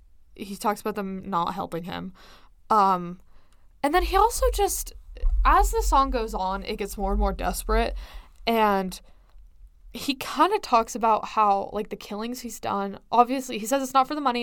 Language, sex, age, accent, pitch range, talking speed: English, female, 10-29, American, 195-255 Hz, 185 wpm